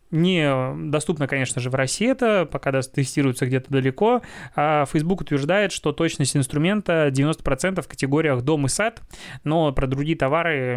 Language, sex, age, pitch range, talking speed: Russian, male, 20-39, 135-160 Hz, 140 wpm